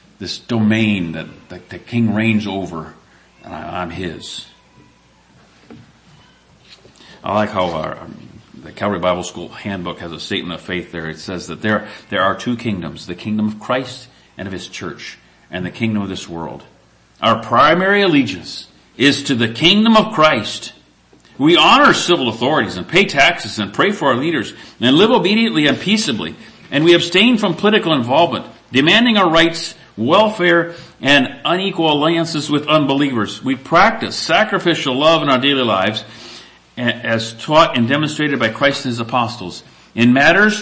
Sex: male